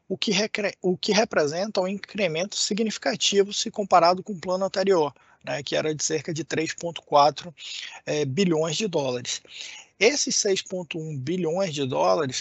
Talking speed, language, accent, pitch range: 150 wpm, Portuguese, Brazilian, 145-185 Hz